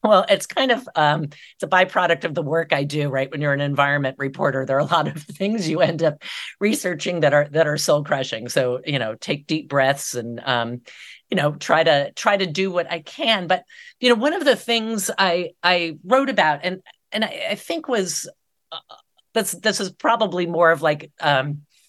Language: English